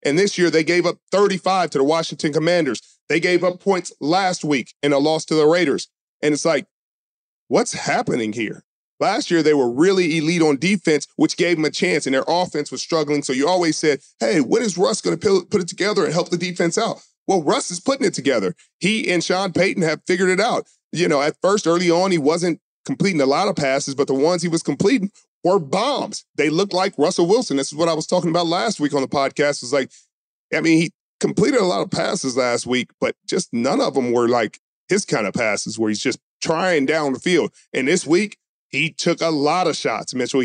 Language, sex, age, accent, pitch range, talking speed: English, male, 40-59, American, 145-180 Hz, 235 wpm